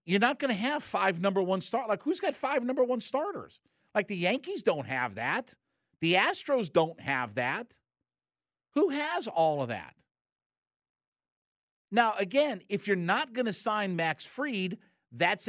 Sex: male